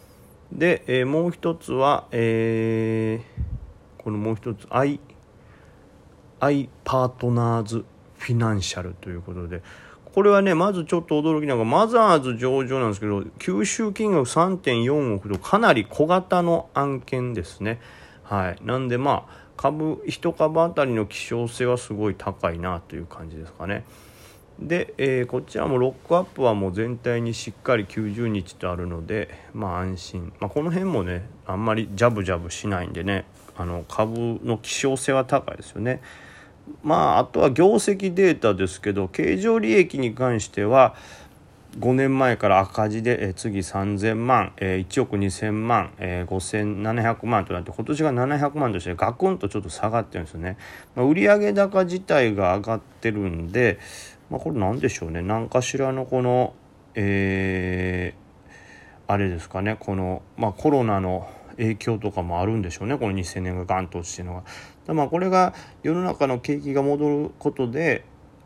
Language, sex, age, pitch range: Japanese, male, 40-59, 95-135 Hz